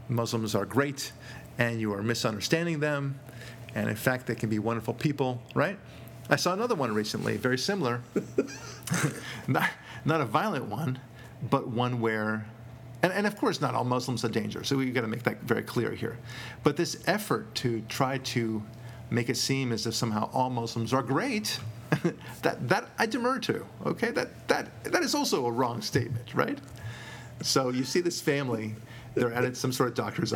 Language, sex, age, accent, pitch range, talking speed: English, male, 40-59, American, 115-130 Hz, 180 wpm